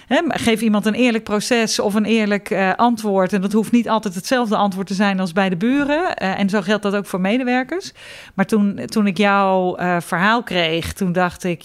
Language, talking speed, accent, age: Dutch, 210 wpm, Dutch, 40-59